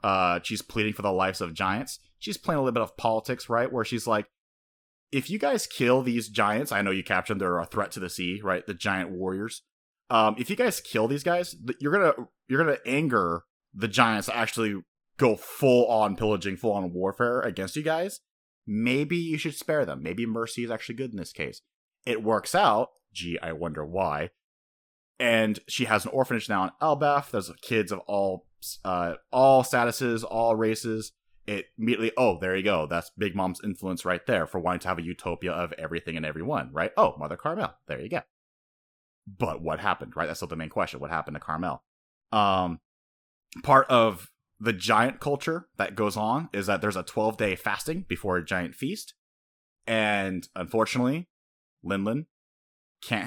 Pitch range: 90-120 Hz